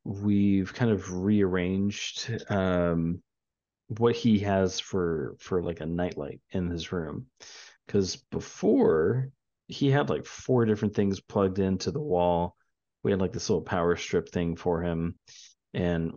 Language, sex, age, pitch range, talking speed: English, male, 30-49, 85-105 Hz, 145 wpm